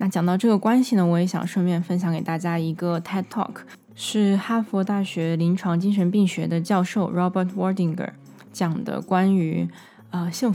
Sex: female